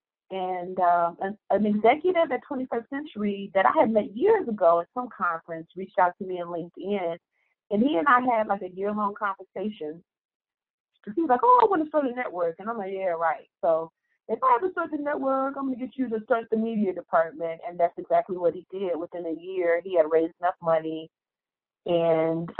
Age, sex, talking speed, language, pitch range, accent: 30-49, female, 210 wpm, English, 165-210 Hz, American